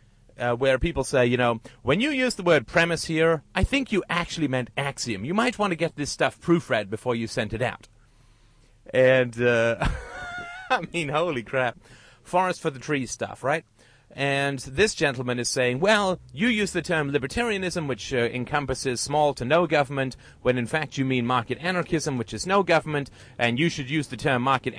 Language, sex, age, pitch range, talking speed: English, male, 30-49, 125-165 Hz, 195 wpm